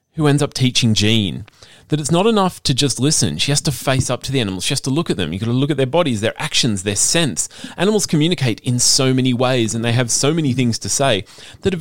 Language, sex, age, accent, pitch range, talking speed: English, male, 30-49, Australian, 105-145 Hz, 270 wpm